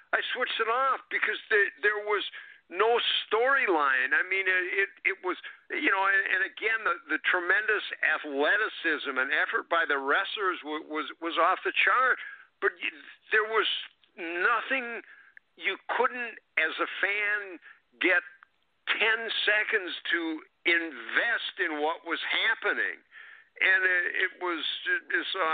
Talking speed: 120 wpm